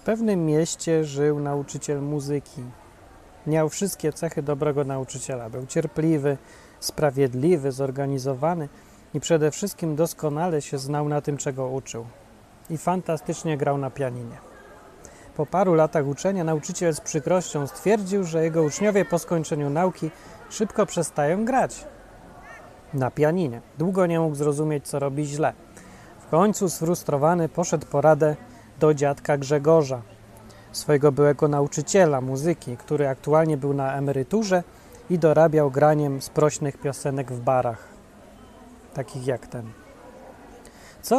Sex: male